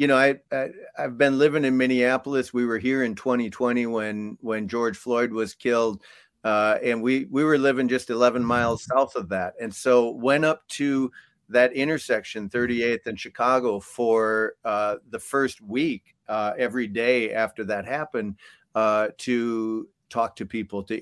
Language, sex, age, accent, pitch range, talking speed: English, male, 50-69, American, 110-130 Hz, 170 wpm